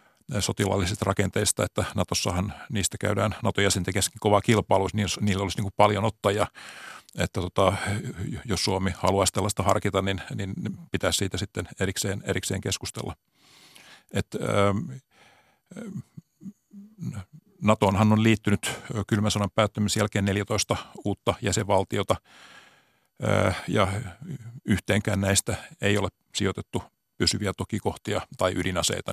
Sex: male